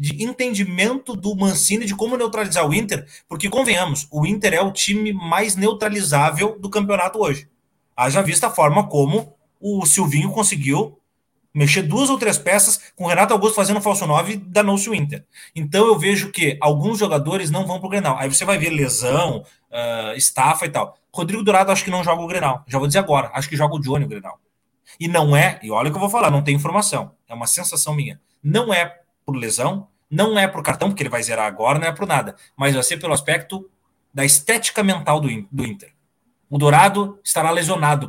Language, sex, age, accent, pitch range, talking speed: Portuguese, male, 30-49, Brazilian, 145-200 Hz, 210 wpm